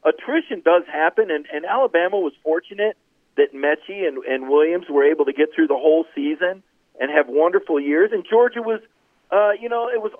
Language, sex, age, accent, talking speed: English, male, 40-59, American, 195 wpm